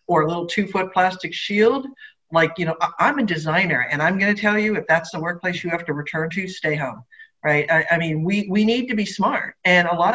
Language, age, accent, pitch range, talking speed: English, 50-69, American, 160-215 Hz, 250 wpm